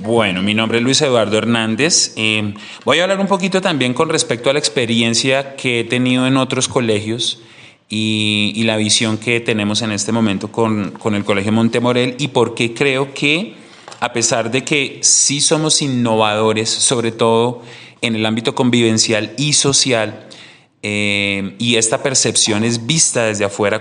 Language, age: Spanish, 30-49